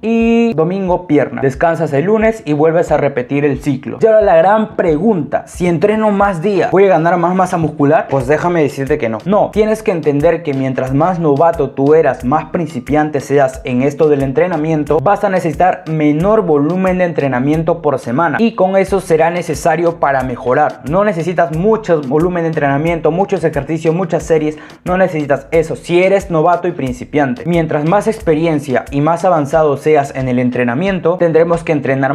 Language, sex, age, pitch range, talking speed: Spanish, male, 20-39, 140-175 Hz, 180 wpm